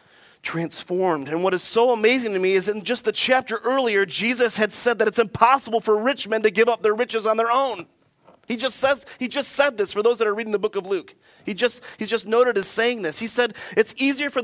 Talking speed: 250 wpm